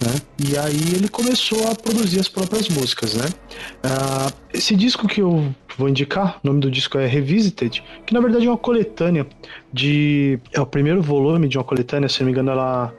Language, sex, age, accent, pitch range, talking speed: Portuguese, male, 20-39, Brazilian, 130-175 Hz, 200 wpm